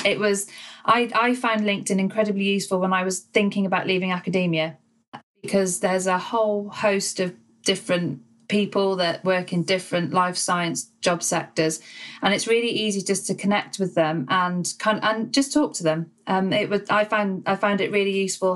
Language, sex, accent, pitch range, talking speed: English, female, British, 180-205 Hz, 185 wpm